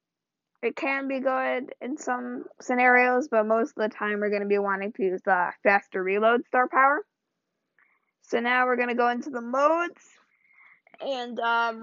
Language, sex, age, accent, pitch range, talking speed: English, female, 20-39, American, 215-250 Hz, 180 wpm